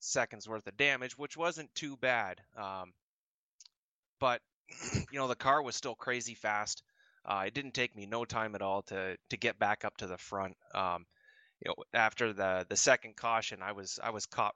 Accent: American